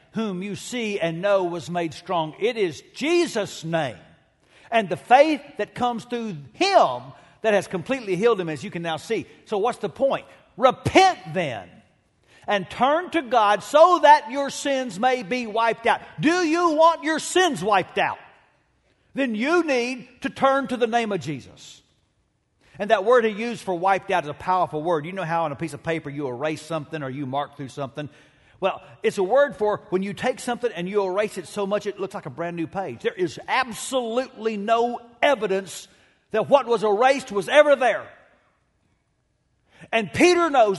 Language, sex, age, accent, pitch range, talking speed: English, male, 50-69, American, 180-280 Hz, 190 wpm